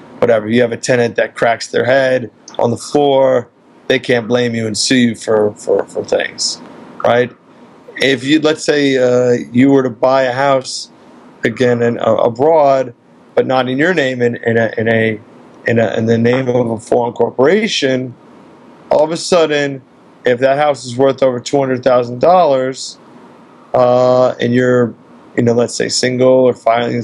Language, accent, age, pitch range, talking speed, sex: English, American, 40-59, 120-135 Hz, 175 wpm, male